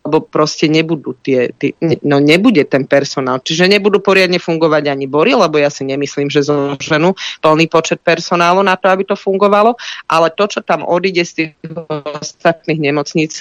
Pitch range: 145-170 Hz